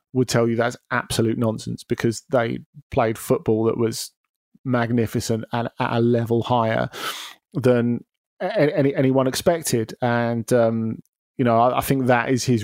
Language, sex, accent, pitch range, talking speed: English, male, British, 120-140 Hz, 145 wpm